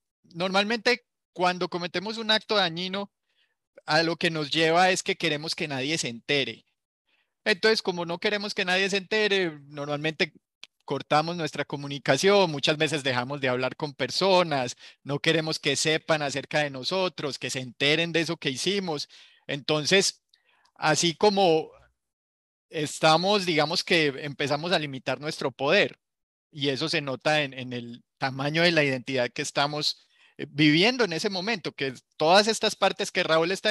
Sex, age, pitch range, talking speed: male, 30-49, 145-185 Hz, 155 wpm